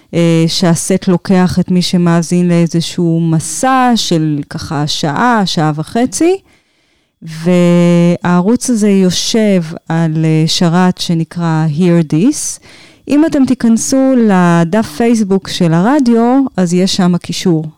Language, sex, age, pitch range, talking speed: Hebrew, female, 30-49, 170-225 Hz, 105 wpm